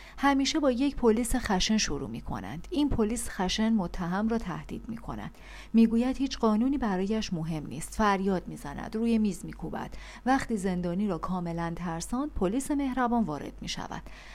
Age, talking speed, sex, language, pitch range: 40-59, 150 wpm, female, Persian, 185-255 Hz